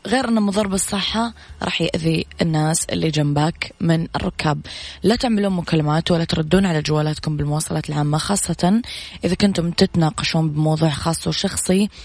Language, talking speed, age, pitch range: Arabic, 135 wpm, 20-39, 155-185 Hz